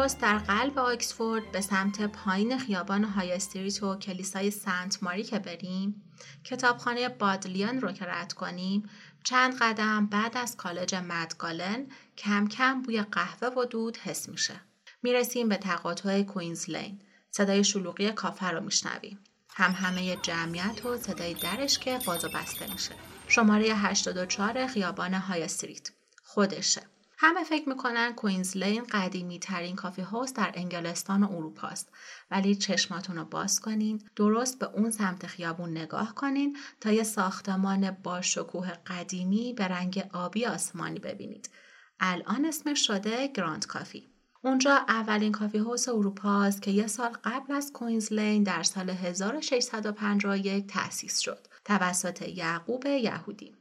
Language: English